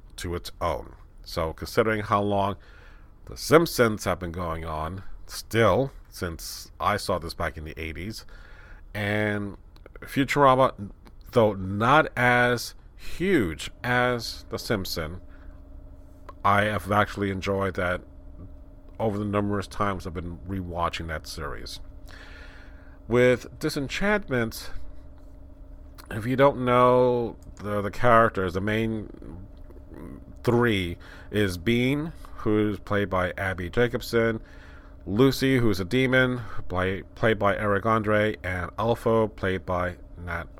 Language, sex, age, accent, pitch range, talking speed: English, male, 40-59, American, 85-115 Hz, 115 wpm